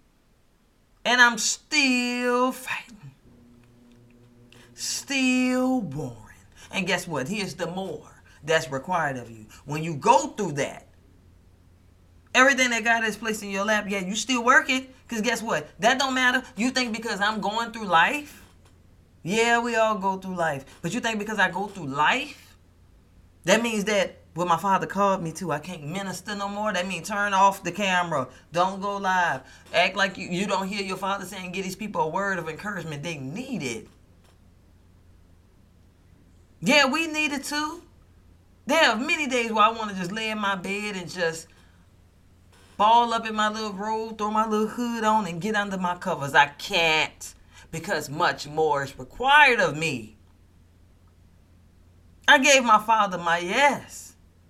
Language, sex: English, female